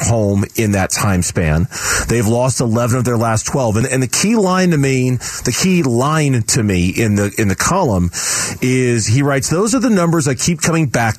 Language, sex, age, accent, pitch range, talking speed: English, male, 40-59, American, 110-150 Hz, 215 wpm